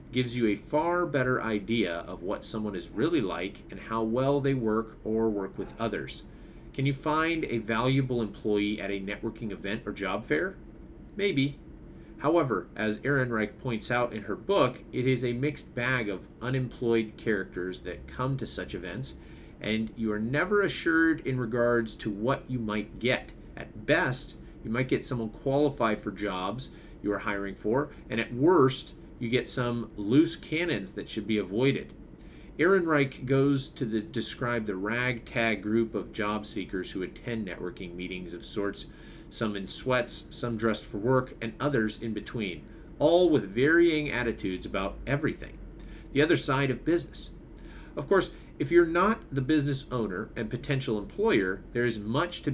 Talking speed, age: 170 wpm, 30-49